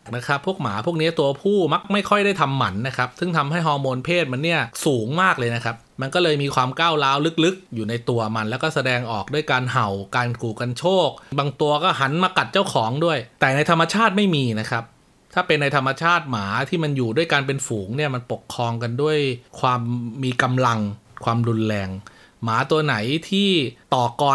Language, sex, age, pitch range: Thai, male, 20-39, 120-160 Hz